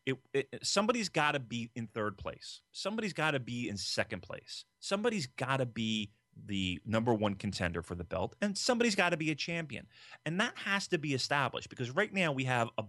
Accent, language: American, English